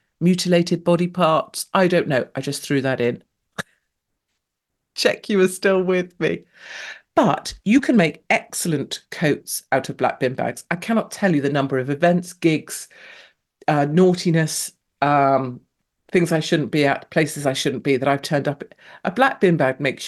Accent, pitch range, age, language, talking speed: British, 140-180 Hz, 40-59, English, 175 wpm